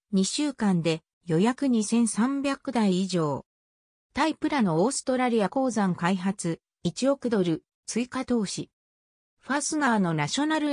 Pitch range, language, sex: 175-265 Hz, Japanese, female